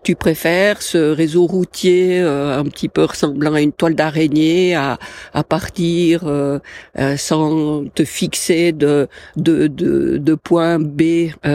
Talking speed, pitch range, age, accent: 150 wpm, 150-185 Hz, 50-69, French